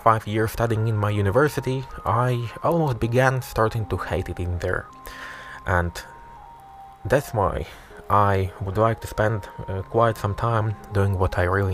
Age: 20-39